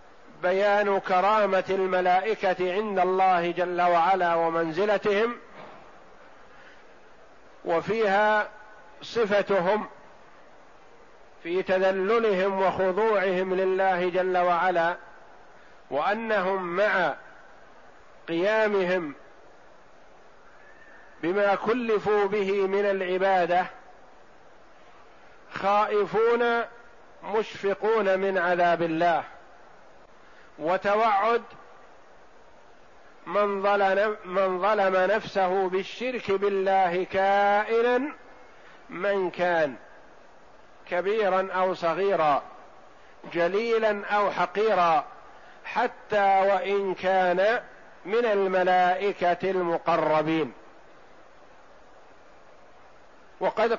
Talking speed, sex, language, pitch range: 55 wpm, male, Arabic, 180-210 Hz